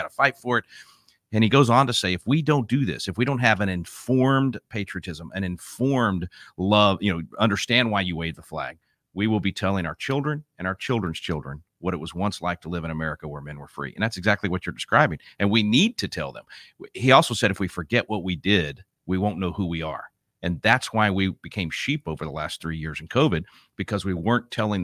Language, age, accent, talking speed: English, 40-59, American, 240 wpm